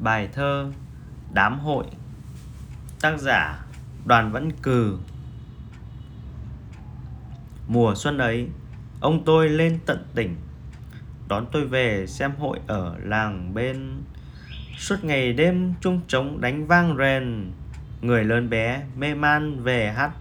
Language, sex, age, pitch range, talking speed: Vietnamese, male, 20-39, 115-160 Hz, 120 wpm